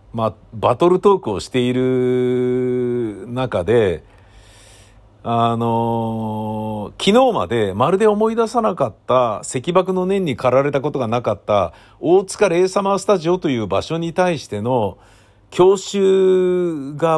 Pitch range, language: 105-135 Hz, Japanese